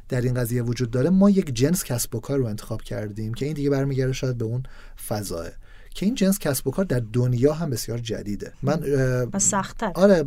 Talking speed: 215 wpm